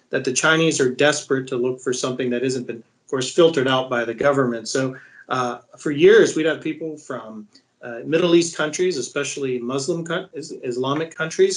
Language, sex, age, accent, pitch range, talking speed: English, male, 40-59, American, 130-160 Hz, 180 wpm